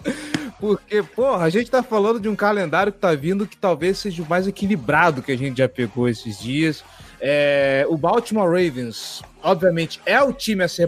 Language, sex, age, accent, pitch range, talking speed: Portuguese, male, 20-39, Brazilian, 130-185 Hz, 195 wpm